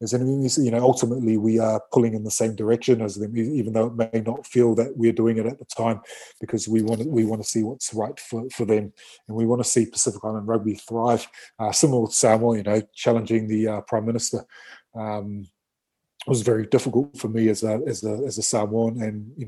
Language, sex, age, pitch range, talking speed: English, male, 20-39, 110-125 Hz, 235 wpm